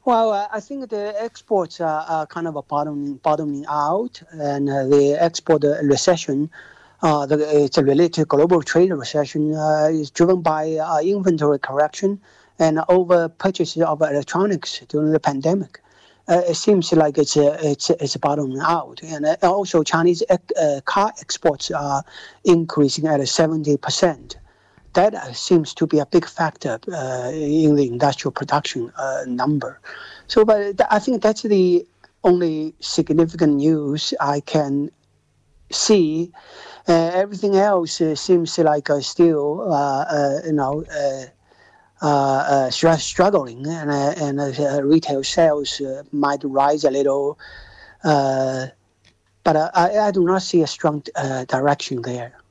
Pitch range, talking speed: 145-170 Hz, 145 wpm